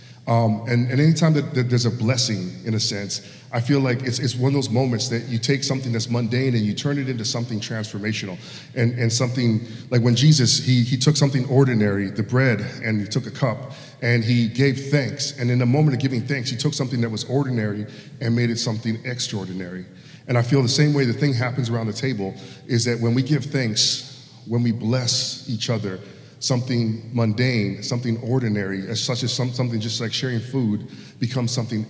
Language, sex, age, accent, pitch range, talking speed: English, male, 40-59, American, 115-130 Hz, 210 wpm